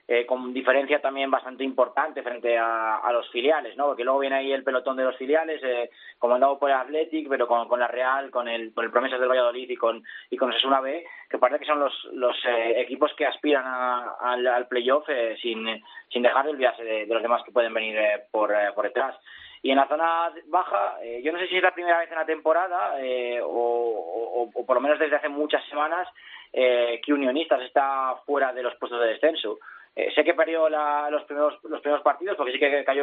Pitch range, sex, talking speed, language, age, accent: 125-150 Hz, male, 235 wpm, Spanish, 20-39, Spanish